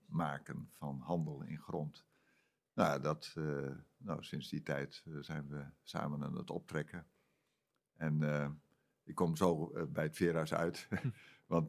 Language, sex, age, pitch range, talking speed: Dutch, male, 60-79, 75-90 Hz, 155 wpm